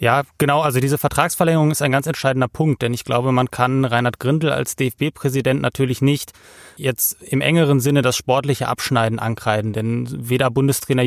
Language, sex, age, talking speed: German, male, 30-49, 175 wpm